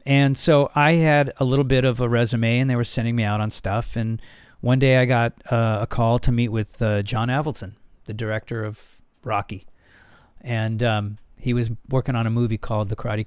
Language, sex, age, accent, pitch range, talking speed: English, male, 40-59, American, 110-135 Hz, 215 wpm